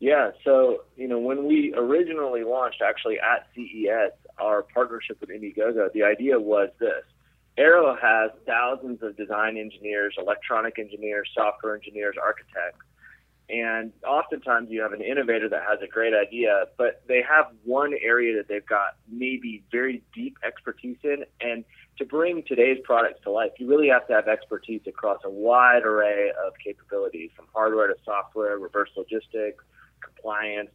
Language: English